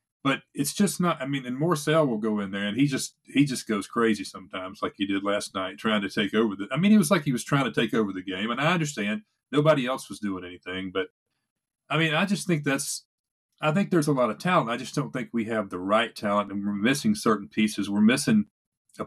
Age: 40-59